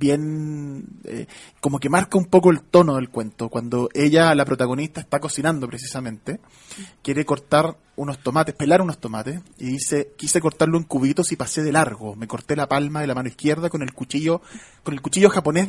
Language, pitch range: Spanish, 130-170 Hz